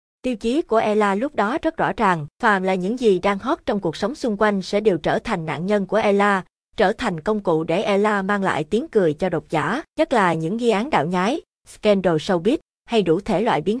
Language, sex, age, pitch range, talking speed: Vietnamese, female, 20-39, 185-230 Hz, 240 wpm